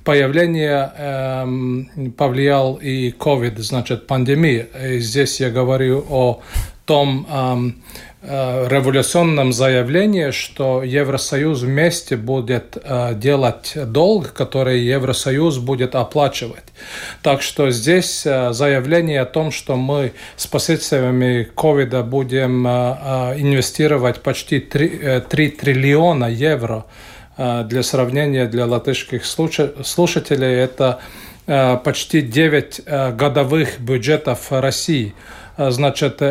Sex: male